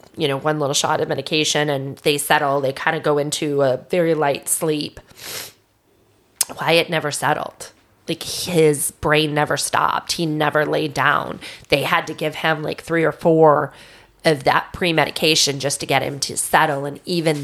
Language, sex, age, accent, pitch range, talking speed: English, female, 20-39, American, 150-165 Hz, 175 wpm